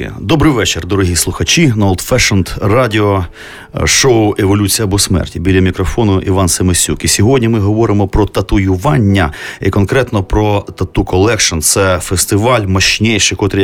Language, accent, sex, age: Ukrainian, native, male, 30-49